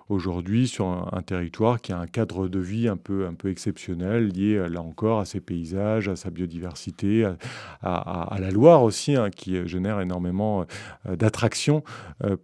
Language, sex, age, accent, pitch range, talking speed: French, male, 30-49, French, 95-125 Hz, 190 wpm